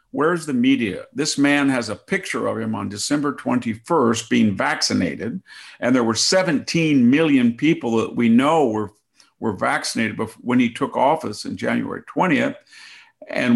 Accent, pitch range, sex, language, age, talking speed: American, 110-135 Hz, male, English, 50-69, 155 wpm